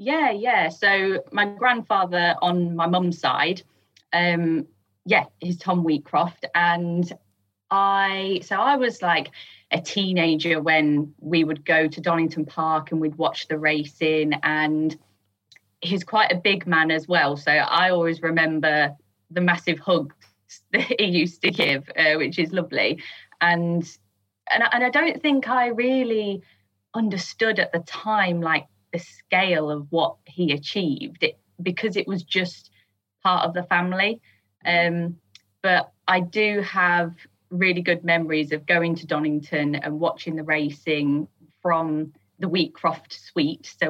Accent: British